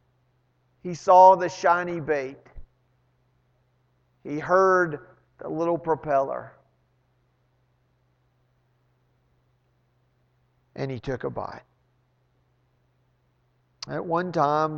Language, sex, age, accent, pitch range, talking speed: English, male, 50-69, American, 125-155 Hz, 75 wpm